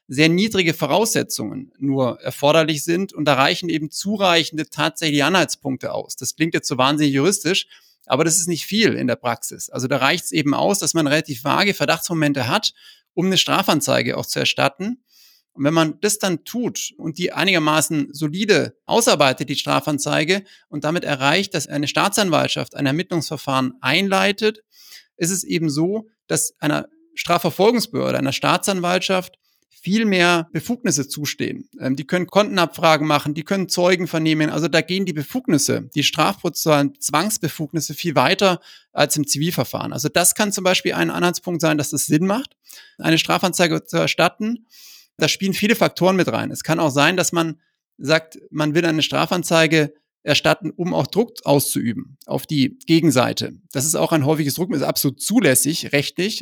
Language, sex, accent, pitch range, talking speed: German, male, German, 150-185 Hz, 160 wpm